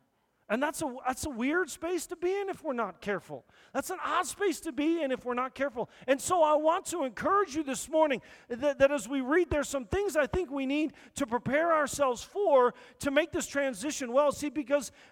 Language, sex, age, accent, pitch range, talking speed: English, male, 40-59, American, 220-320 Hz, 225 wpm